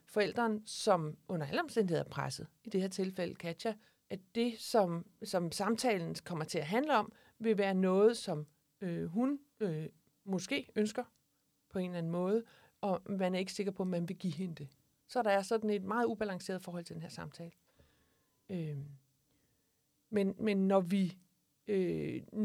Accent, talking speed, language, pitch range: native, 175 wpm, Danish, 175-220 Hz